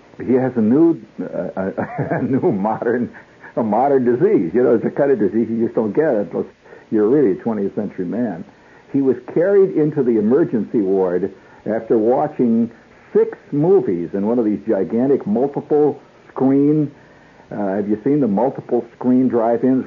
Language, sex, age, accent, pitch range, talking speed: English, male, 60-79, American, 115-165 Hz, 170 wpm